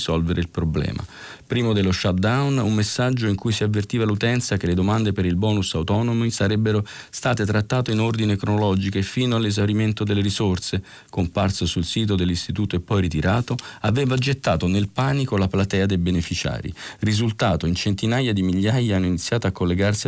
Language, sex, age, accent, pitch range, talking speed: Italian, male, 40-59, native, 90-110 Hz, 165 wpm